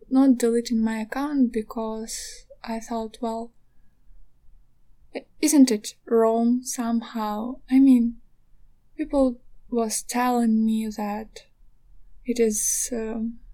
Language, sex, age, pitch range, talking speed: English, female, 10-29, 220-260 Hz, 100 wpm